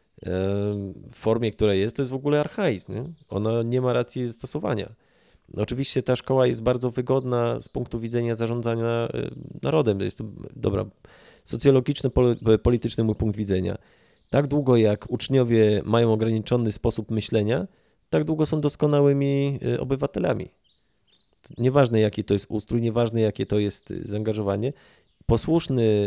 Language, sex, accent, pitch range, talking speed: Polish, male, native, 110-130 Hz, 135 wpm